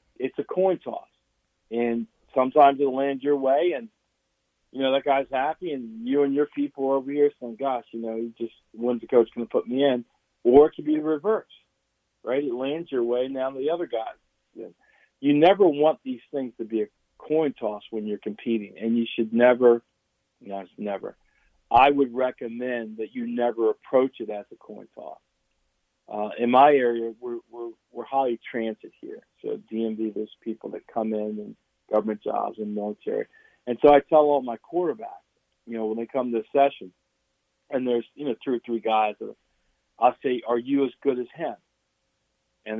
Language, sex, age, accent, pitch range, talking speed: English, male, 50-69, American, 115-140 Hz, 195 wpm